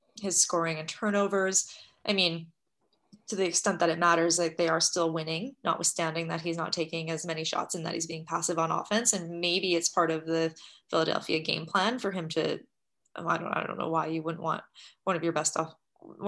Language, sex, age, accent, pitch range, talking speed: English, female, 20-39, American, 165-205 Hz, 215 wpm